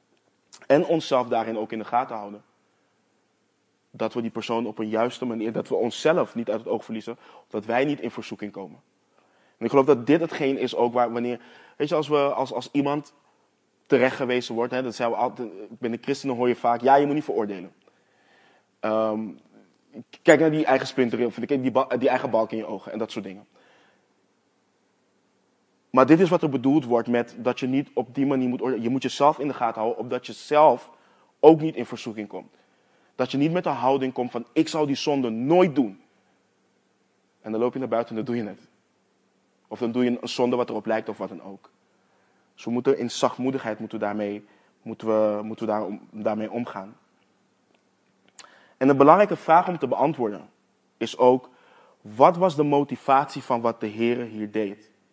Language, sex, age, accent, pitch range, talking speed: Dutch, male, 20-39, Dutch, 110-140 Hz, 200 wpm